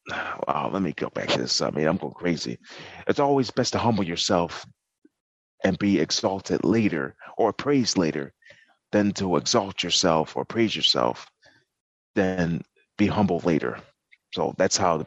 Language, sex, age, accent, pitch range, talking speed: English, male, 30-49, American, 85-105 Hz, 160 wpm